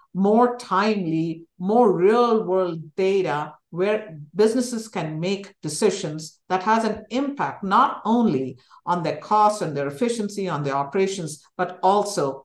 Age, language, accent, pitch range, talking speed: 60-79, English, Indian, 165-210 Hz, 135 wpm